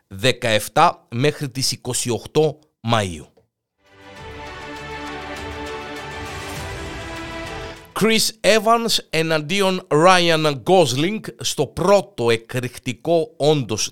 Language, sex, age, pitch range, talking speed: Greek, male, 50-69, 115-155 Hz, 60 wpm